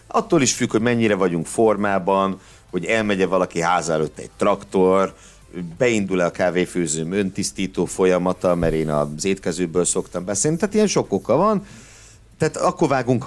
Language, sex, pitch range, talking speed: Hungarian, male, 85-120 Hz, 150 wpm